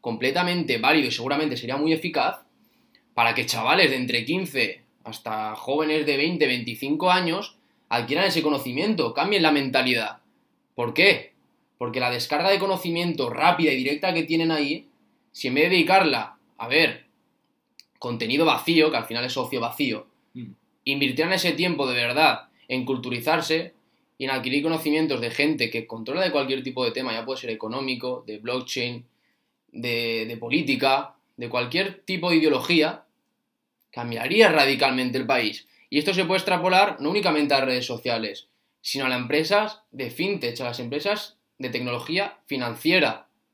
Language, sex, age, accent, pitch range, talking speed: Spanish, male, 20-39, Spanish, 120-160 Hz, 155 wpm